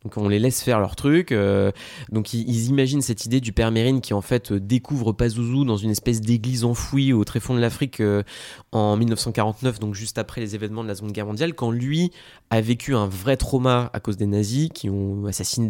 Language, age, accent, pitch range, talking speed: French, 20-39, French, 100-125 Hz, 220 wpm